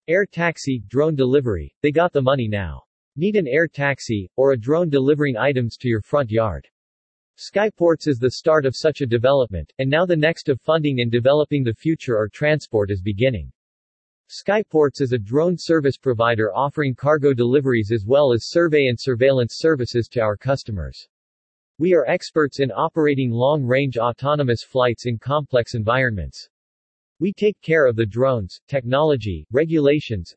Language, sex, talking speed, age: English, male, 160 wpm, 40-59